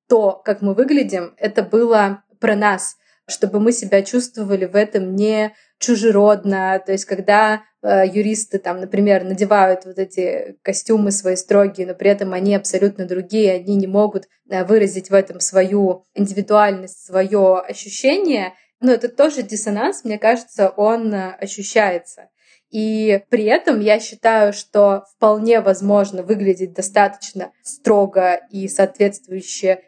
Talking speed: 130 wpm